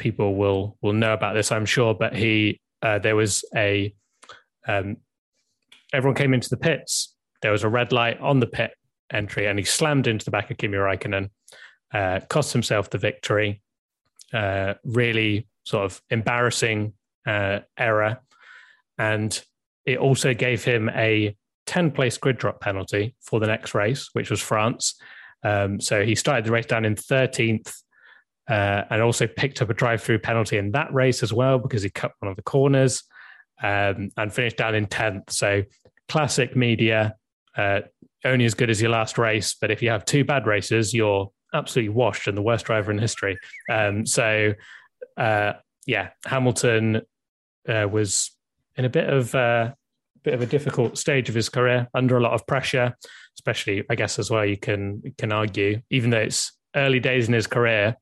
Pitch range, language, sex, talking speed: 105-125 Hz, English, male, 180 wpm